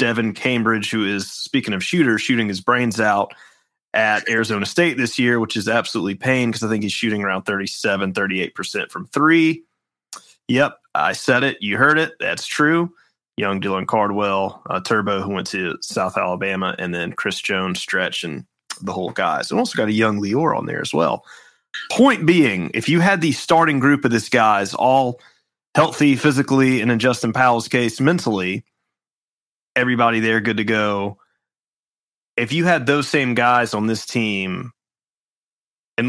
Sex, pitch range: male, 105-130 Hz